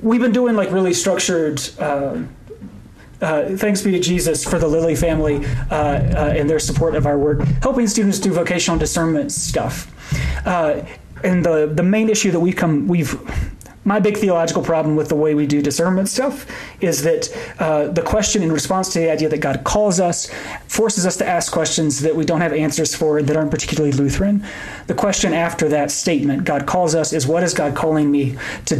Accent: American